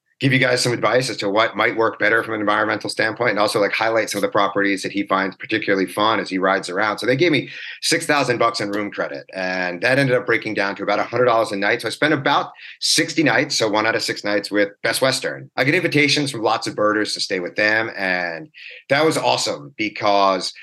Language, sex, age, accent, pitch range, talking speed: English, male, 30-49, American, 100-125 Hz, 240 wpm